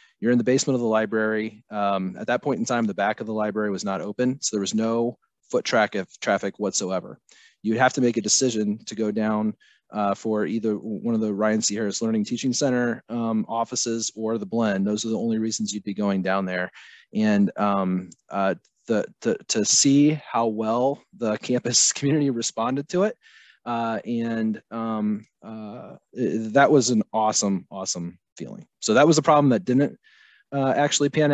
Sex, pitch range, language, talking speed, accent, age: male, 110-145 Hz, English, 195 wpm, American, 30-49